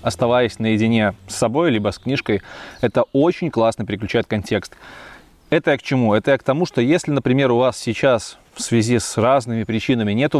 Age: 20-39